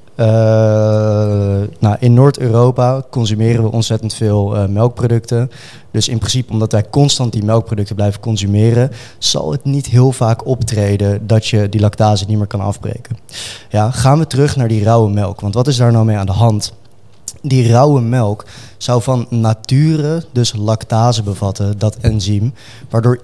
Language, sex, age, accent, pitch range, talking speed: Dutch, male, 20-39, Dutch, 110-125 Hz, 160 wpm